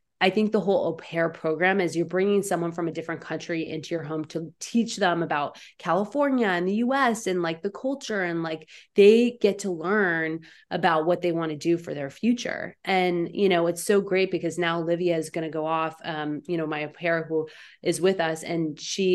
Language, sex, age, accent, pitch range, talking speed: English, female, 20-39, American, 160-190 Hz, 225 wpm